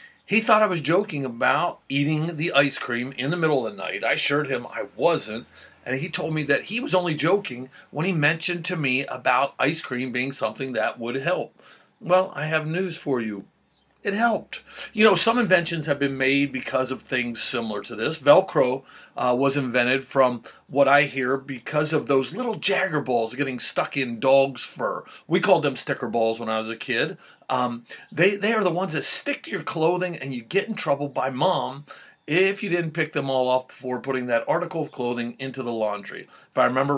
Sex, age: male, 40-59